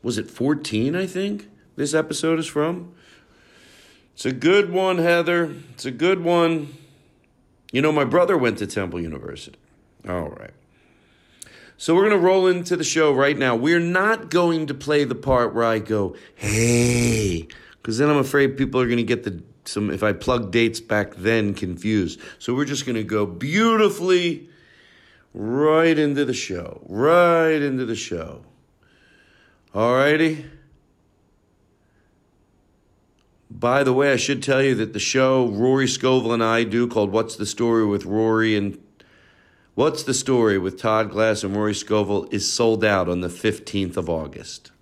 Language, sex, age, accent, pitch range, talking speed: English, male, 50-69, American, 105-145 Hz, 165 wpm